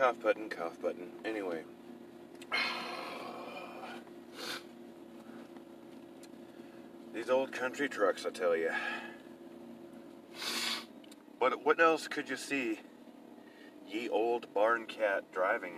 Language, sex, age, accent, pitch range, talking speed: English, male, 40-59, American, 275-310 Hz, 90 wpm